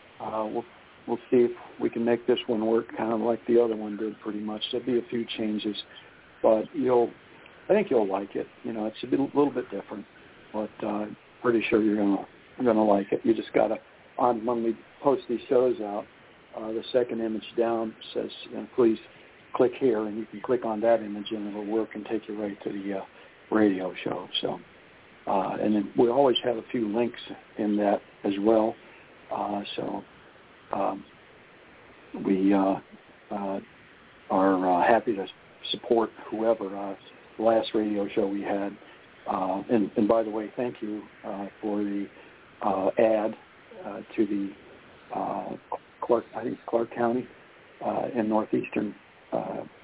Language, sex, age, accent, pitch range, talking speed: English, male, 60-79, American, 105-115 Hz, 180 wpm